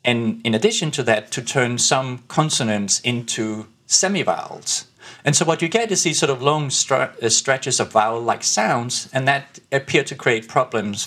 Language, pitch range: English, 110-140 Hz